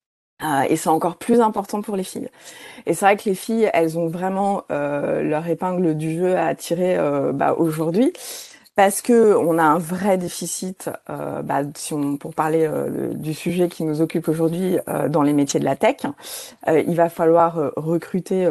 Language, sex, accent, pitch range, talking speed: French, female, French, 160-215 Hz, 190 wpm